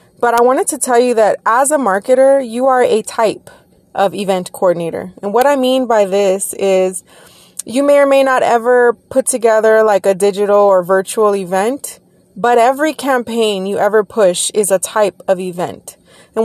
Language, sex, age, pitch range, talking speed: English, female, 20-39, 200-240 Hz, 180 wpm